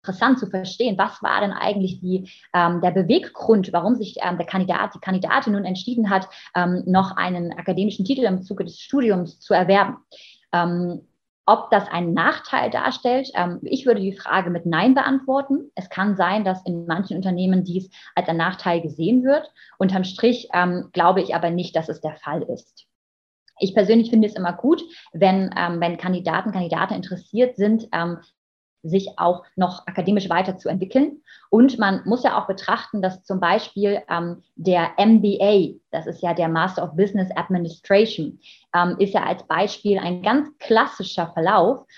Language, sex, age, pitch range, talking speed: German, female, 20-39, 175-215 Hz, 165 wpm